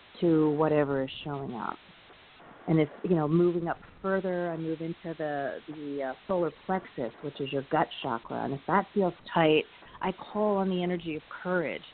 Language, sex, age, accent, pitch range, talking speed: English, female, 40-59, American, 150-180 Hz, 185 wpm